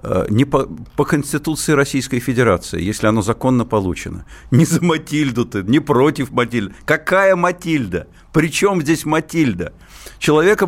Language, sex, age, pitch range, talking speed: Russian, male, 50-69, 105-145 Hz, 130 wpm